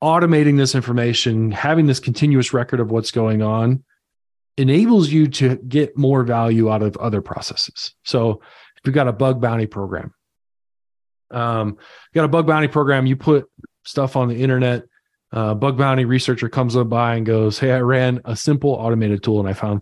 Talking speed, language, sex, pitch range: 185 wpm, English, male, 115-145 Hz